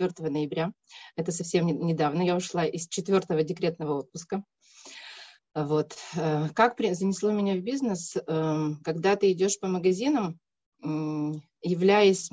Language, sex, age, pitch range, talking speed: Russian, female, 30-49, 160-200 Hz, 110 wpm